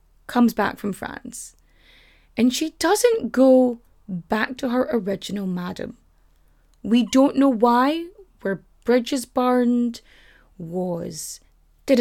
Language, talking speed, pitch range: English, 110 wpm, 215-290 Hz